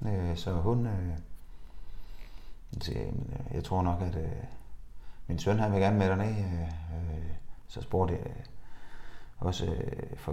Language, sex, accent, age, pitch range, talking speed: Danish, male, native, 30-49, 85-110 Hz, 140 wpm